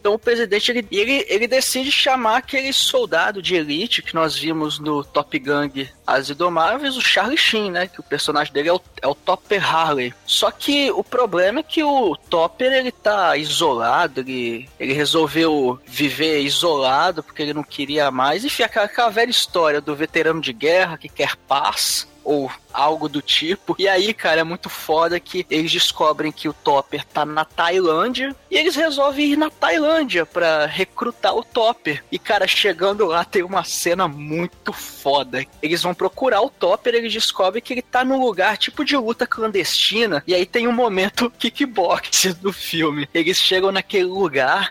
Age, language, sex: 20-39, Portuguese, male